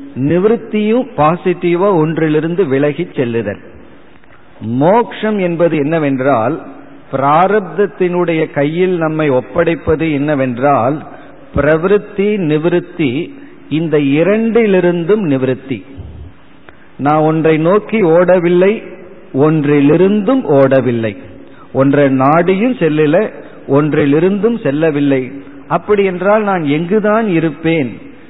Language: Tamil